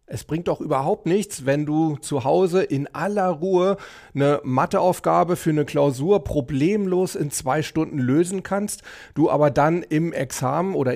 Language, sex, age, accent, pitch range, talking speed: German, male, 40-59, German, 135-165 Hz, 160 wpm